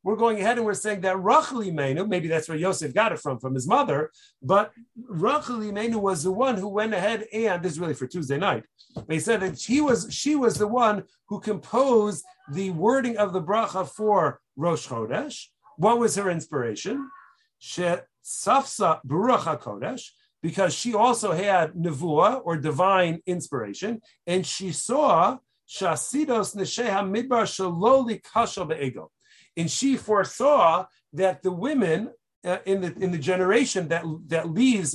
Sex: male